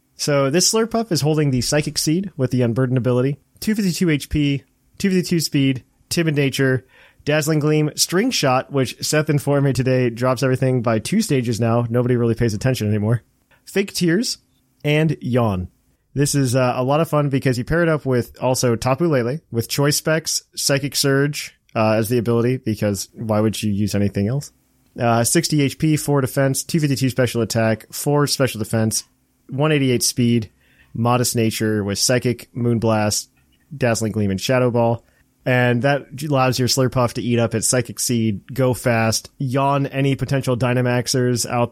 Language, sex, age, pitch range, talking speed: English, male, 30-49, 115-140 Hz, 165 wpm